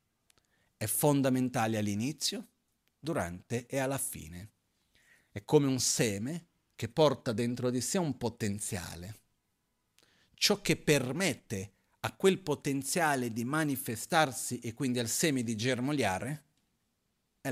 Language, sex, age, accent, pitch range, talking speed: Italian, male, 40-59, native, 110-145 Hz, 115 wpm